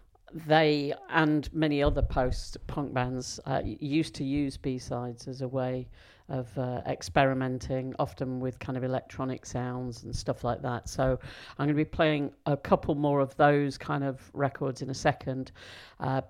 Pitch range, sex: 130-150 Hz, female